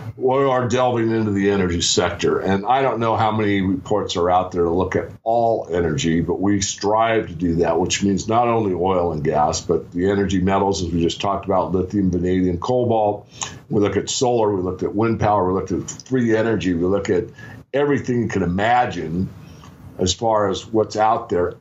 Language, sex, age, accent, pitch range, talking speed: English, male, 50-69, American, 90-110 Hz, 205 wpm